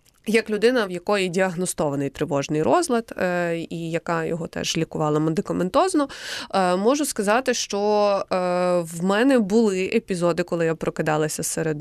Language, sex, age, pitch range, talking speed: Ukrainian, female, 20-39, 175-230 Hz, 135 wpm